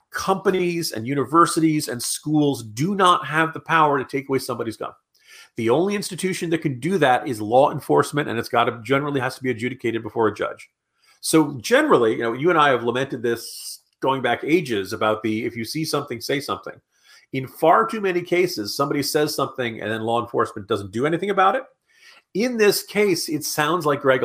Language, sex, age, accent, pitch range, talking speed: English, male, 40-59, American, 115-150 Hz, 205 wpm